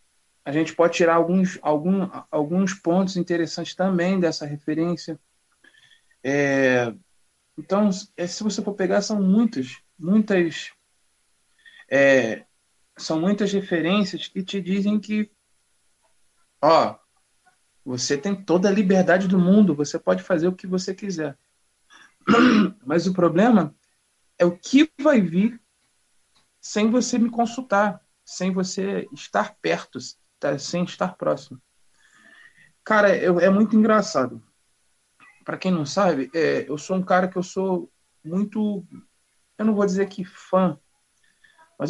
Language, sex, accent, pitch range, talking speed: Portuguese, male, Brazilian, 155-200 Hz, 125 wpm